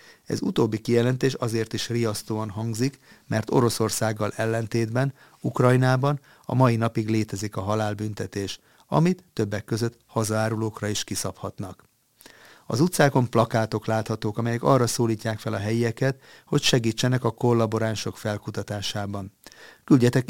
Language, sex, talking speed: Hungarian, male, 115 wpm